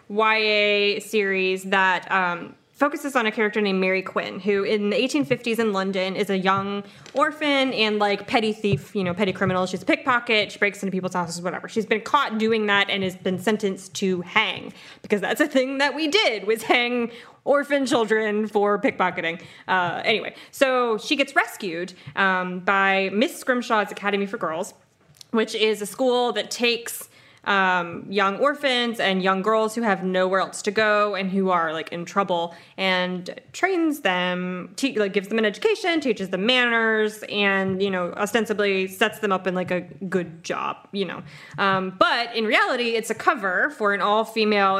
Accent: American